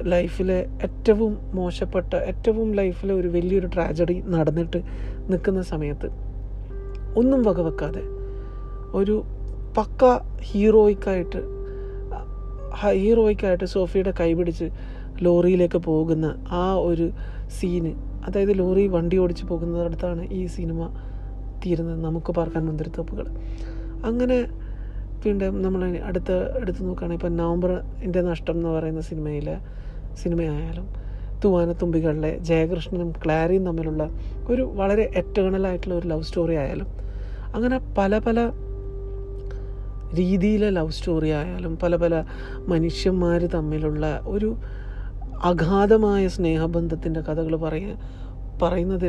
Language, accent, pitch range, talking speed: Malayalam, native, 150-190 Hz, 95 wpm